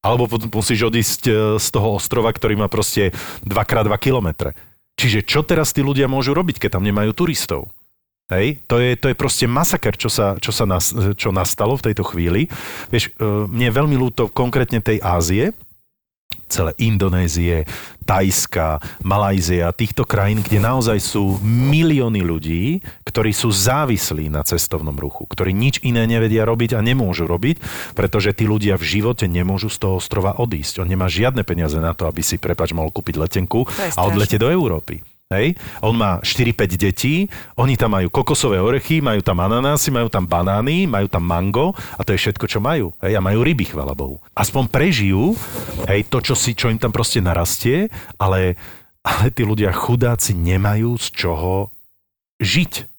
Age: 40-59